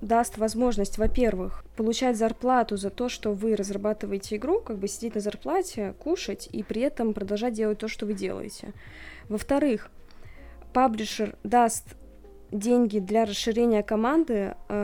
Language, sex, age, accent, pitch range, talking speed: Russian, female, 20-39, native, 200-235 Hz, 135 wpm